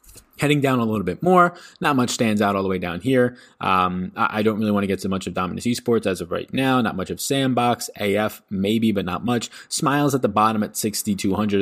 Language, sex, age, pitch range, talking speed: English, male, 20-39, 95-115 Hz, 245 wpm